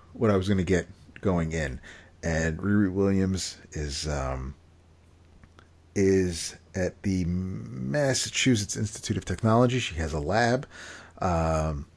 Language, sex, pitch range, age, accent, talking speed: English, male, 80-95 Hz, 40-59, American, 125 wpm